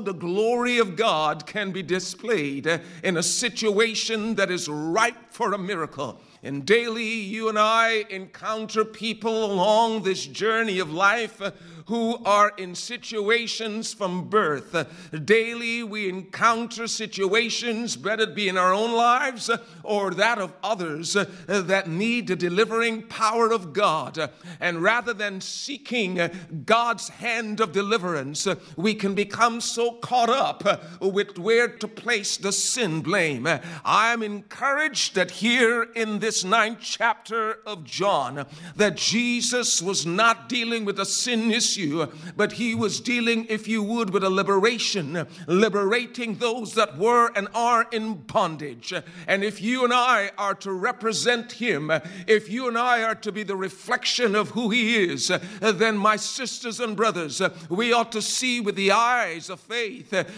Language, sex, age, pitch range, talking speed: English, male, 50-69, 190-230 Hz, 150 wpm